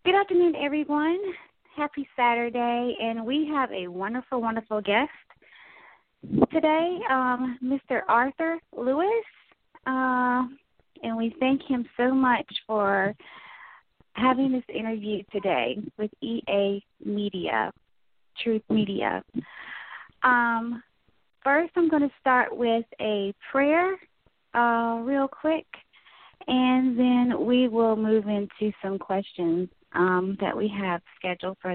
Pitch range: 200-260 Hz